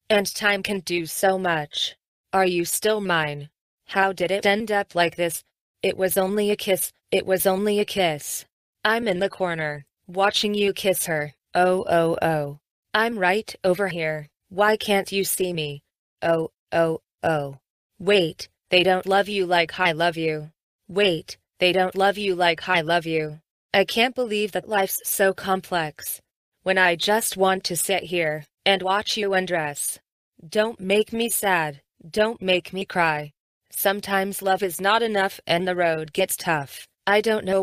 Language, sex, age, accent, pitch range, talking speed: English, female, 20-39, American, 165-195 Hz, 170 wpm